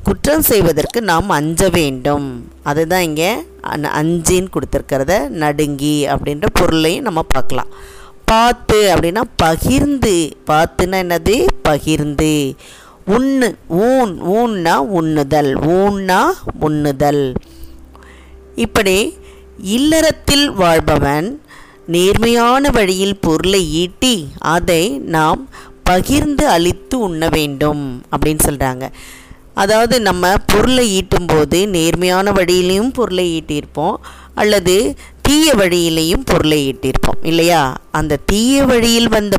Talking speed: 90 wpm